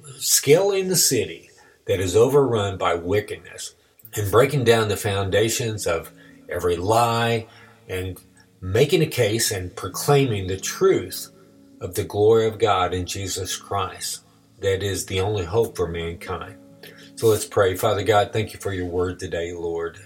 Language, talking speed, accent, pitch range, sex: English, 155 wpm, American, 90-115 Hz, male